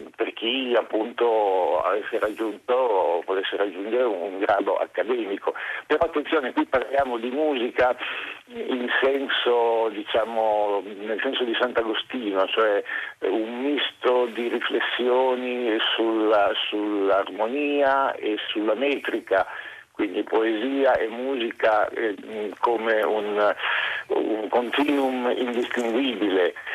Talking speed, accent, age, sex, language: 100 wpm, native, 50-69, male, Italian